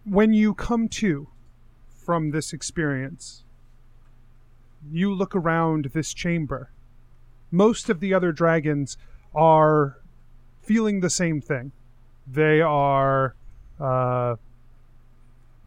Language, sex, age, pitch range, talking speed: English, male, 30-49, 120-170 Hz, 95 wpm